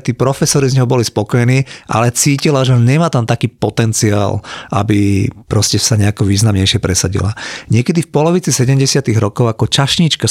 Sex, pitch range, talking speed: male, 110-140 Hz, 150 wpm